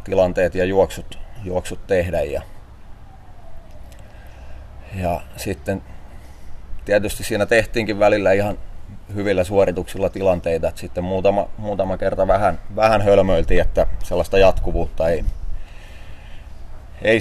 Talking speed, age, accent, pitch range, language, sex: 100 wpm, 30-49, native, 90-100 Hz, Finnish, male